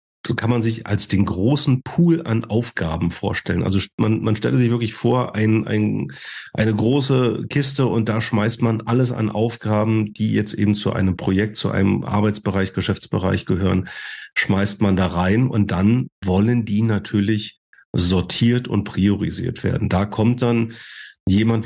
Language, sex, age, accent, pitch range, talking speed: German, male, 40-59, German, 100-125 Hz, 160 wpm